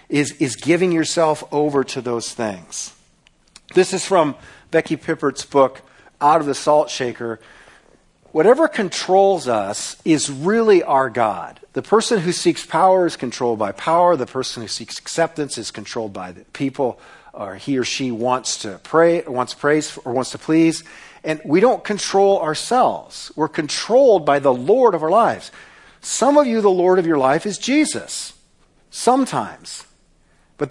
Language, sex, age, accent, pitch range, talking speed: English, male, 50-69, American, 145-215 Hz, 165 wpm